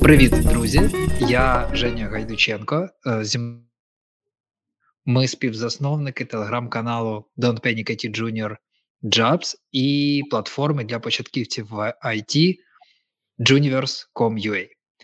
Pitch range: 120-150 Hz